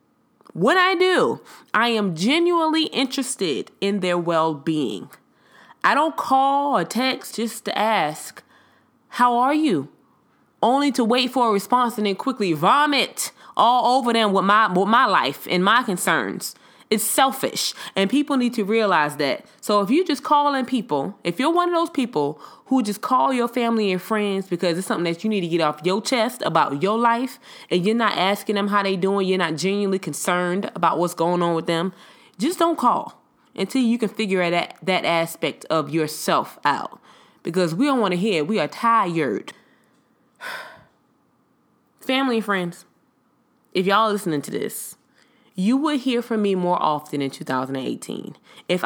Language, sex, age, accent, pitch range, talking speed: English, female, 20-39, American, 185-270 Hz, 175 wpm